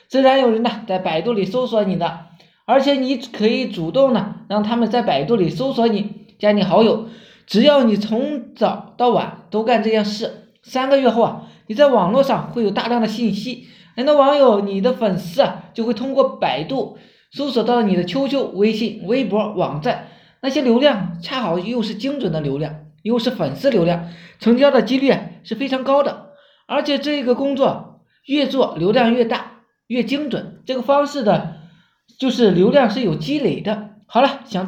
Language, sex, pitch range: Chinese, male, 205-255 Hz